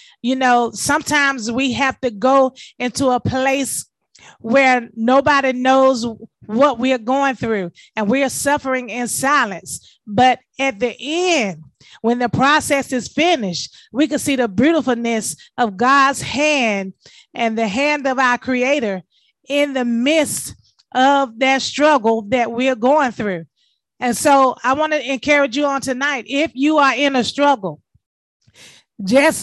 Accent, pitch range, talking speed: American, 235-285 Hz, 150 wpm